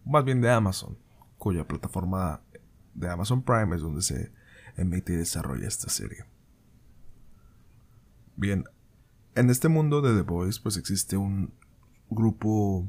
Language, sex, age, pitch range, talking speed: Spanish, male, 20-39, 95-115 Hz, 130 wpm